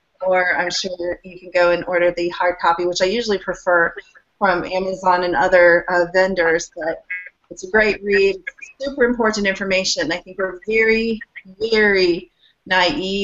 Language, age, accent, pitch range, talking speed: English, 30-49, American, 185-210 Hz, 160 wpm